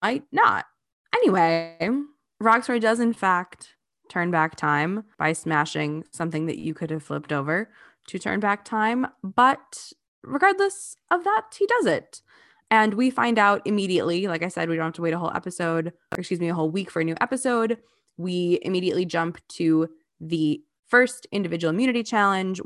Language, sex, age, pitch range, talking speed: English, female, 20-39, 165-235 Hz, 170 wpm